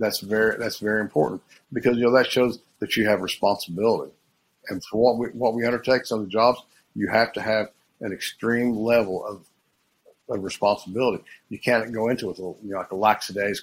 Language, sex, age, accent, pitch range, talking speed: English, male, 50-69, American, 100-115 Hz, 205 wpm